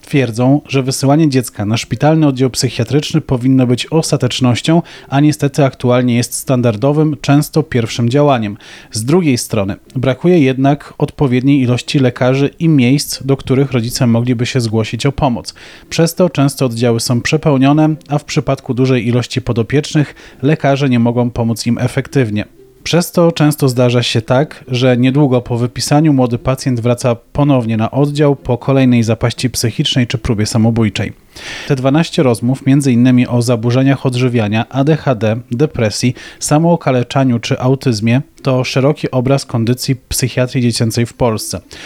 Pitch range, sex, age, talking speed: 120-140 Hz, male, 30-49, 140 wpm